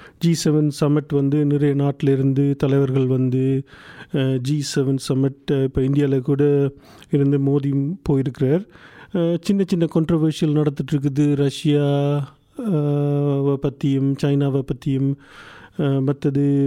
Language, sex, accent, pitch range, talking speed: Tamil, male, native, 140-185 Hz, 95 wpm